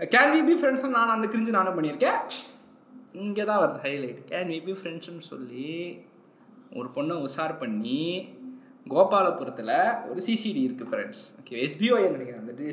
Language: Tamil